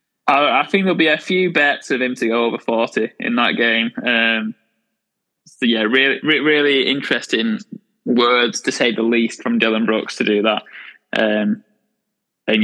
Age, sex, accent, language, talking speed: 10-29, male, British, English, 170 wpm